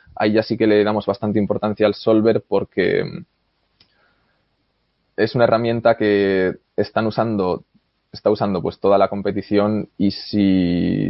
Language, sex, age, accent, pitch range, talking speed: Spanish, male, 20-39, Spanish, 100-115 Hz, 135 wpm